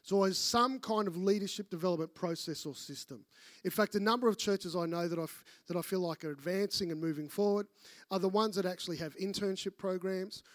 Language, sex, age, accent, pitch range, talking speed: English, male, 30-49, Australian, 175-210 Hz, 210 wpm